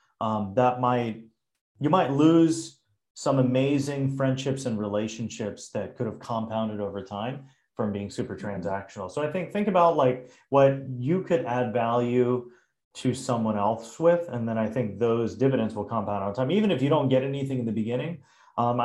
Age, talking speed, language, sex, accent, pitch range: 30-49, 180 wpm, English, male, American, 105-130 Hz